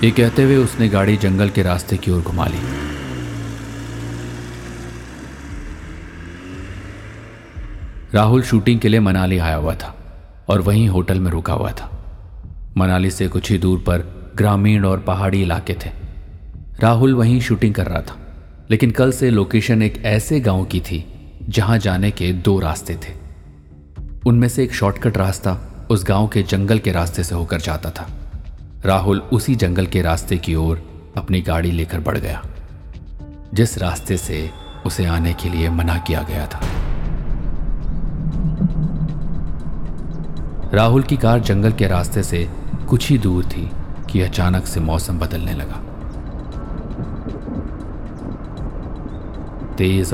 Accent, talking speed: native, 135 wpm